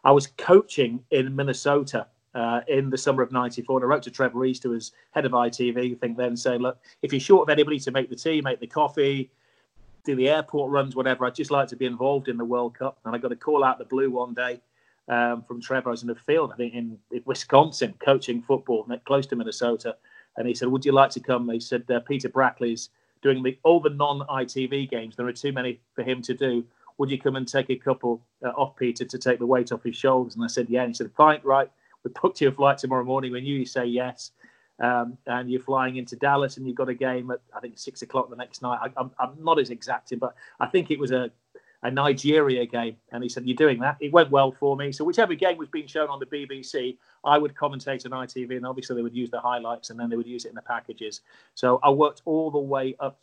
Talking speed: 260 wpm